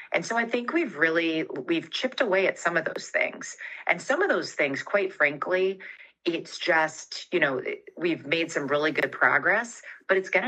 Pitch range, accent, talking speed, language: 140-175 Hz, American, 195 wpm, English